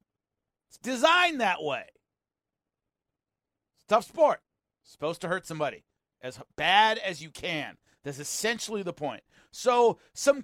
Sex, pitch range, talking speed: male, 150-235 Hz, 130 wpm